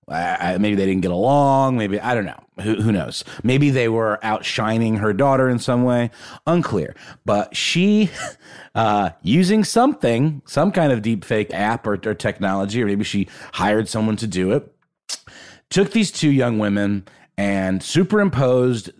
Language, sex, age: English, male, 30-49